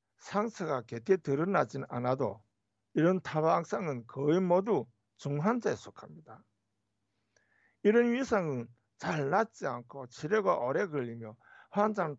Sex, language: male, Korean